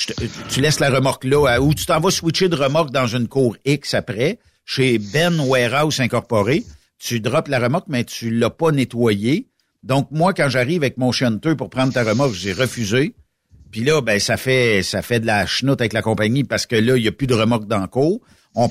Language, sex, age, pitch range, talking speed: French, male, 60-79, 120-170 Hz, 225 wpm